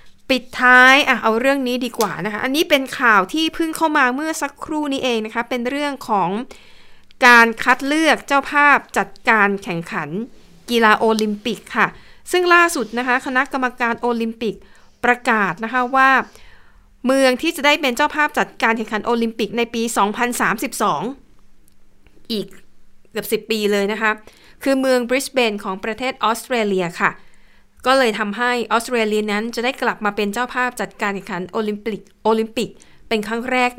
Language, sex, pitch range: Thai, female, 210-255 Hz